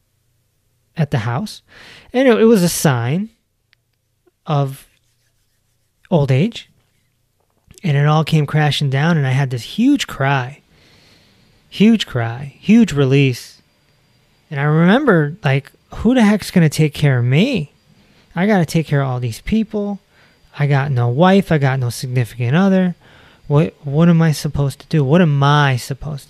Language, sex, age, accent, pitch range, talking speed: English, male, 20-39, American, 125-155 Hz, 155 wpm